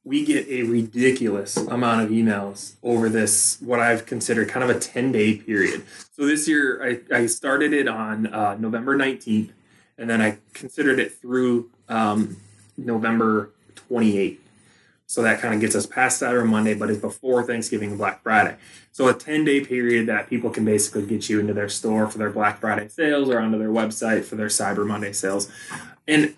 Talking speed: 190 wpm